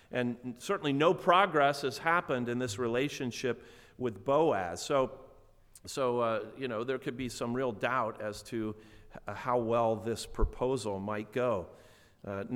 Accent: American